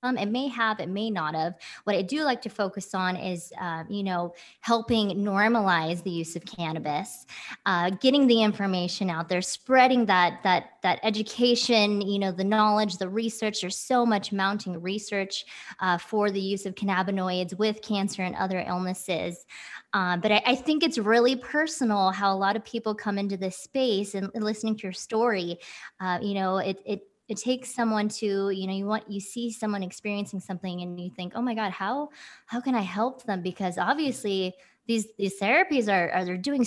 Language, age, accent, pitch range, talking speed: English, 20-39, American, 185-230 Hz, 190 wpm